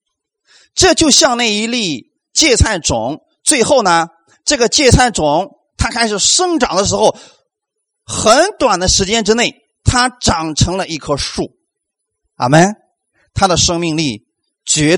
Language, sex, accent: Chinese, male, native